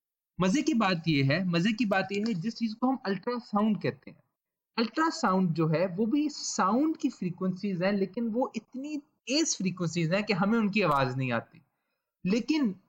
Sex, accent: male, native